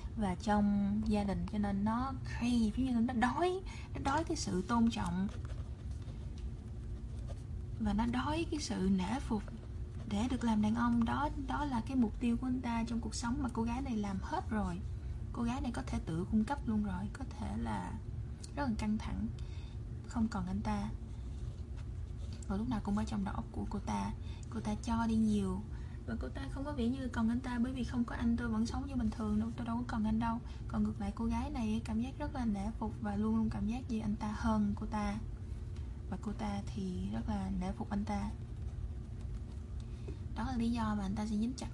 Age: 20-39